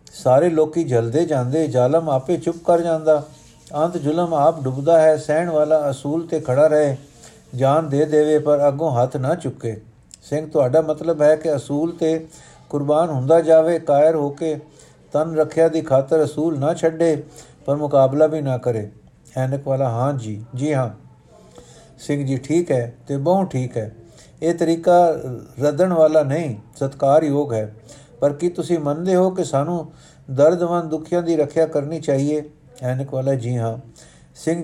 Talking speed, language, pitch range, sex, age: 160 wpm, Punjabi, 135-160 Hz, male, 50-69